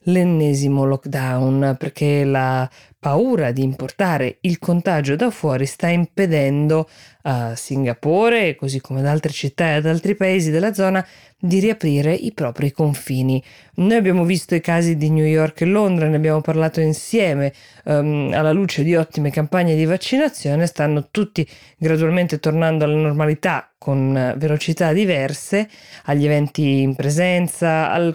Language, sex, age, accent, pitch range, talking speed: Italian, female, 20-39, native, 145-180 Hz, 145 wpm